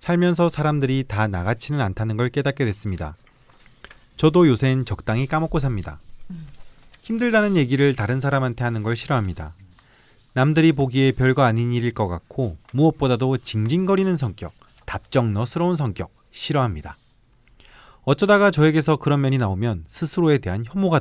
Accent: native